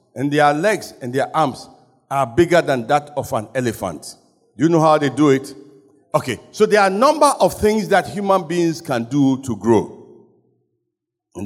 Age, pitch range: 60-79, 130-175 Hz